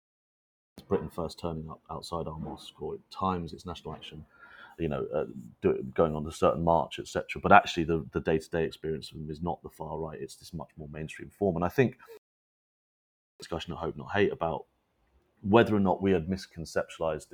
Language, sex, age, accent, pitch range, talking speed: English, male, 30-49, British, 80-95 Hz, 195 wpm